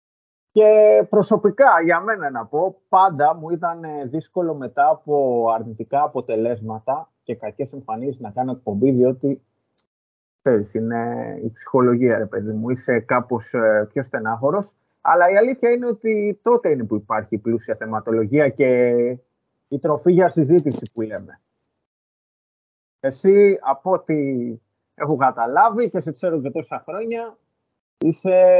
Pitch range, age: 125-170 Hz, 30-49